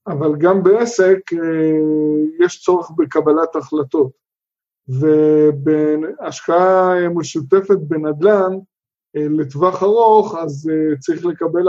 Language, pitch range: Hebrew, 155-185 Hz